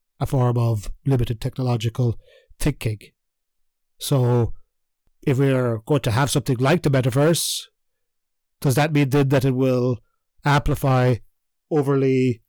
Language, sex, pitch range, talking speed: English, male, 120-145 Hz, 120 wpm